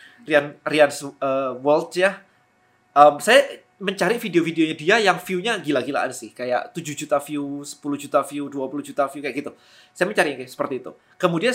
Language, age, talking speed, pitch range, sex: Indonesian, 20-39, 165 wpm, 145-195 Hz, male